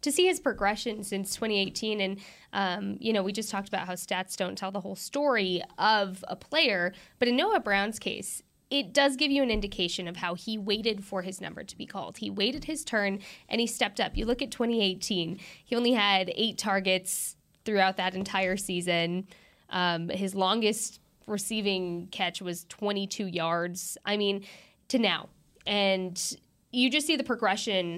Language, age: English, 20-39